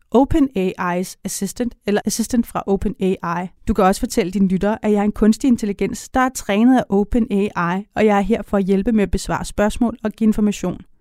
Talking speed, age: 200 wpm, 30-49